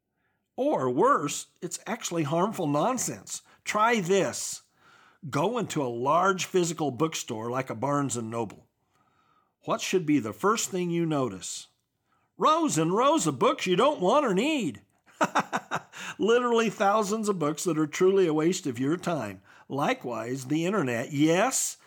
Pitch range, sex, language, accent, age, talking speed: 150-215 Hz, male, English, American, 50-69, 145 wpm